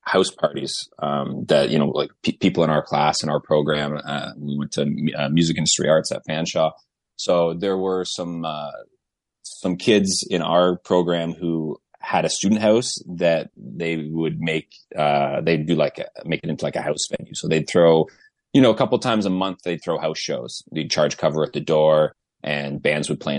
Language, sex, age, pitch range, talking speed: English, male, 30-49, 75-90 Hz, 205 wpm